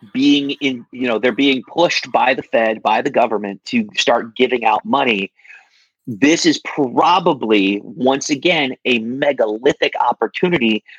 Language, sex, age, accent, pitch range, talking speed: English, male, 30-49, American, 115-180 Hz, 140 wpm